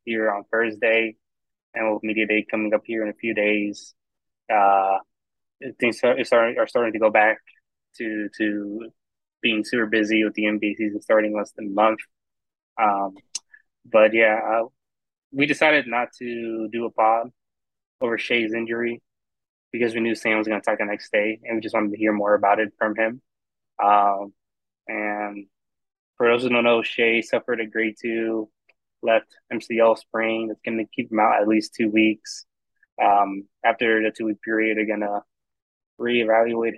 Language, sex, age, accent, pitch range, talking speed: English, male, 20-39, American, 105-115 Hz, 175 wpm